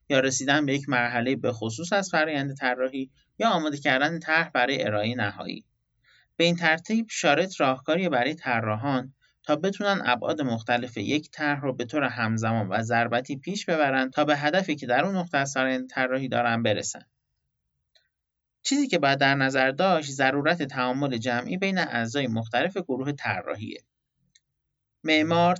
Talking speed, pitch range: 150 wpm, 120-155 Hz